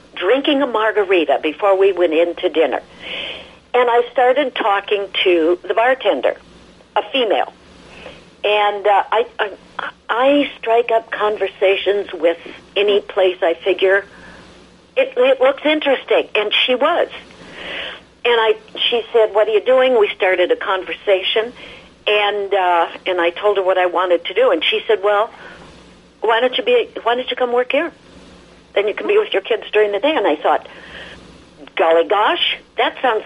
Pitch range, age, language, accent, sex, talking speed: 190-270 Hz, 60-79, English, American, female, 165 wpm